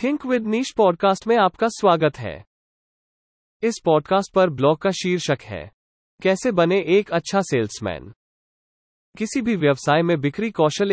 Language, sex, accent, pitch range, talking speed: English, male, Indian, 135-190 Hz, 145 wpm